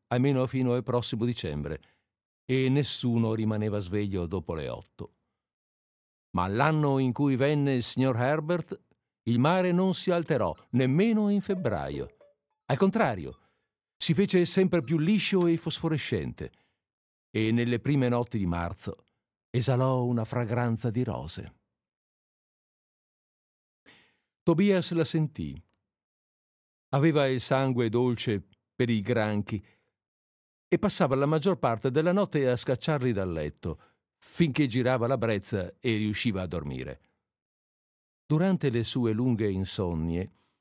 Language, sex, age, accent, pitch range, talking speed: Italian, male, 50-69, native, 105-150 Hz, 120 wpm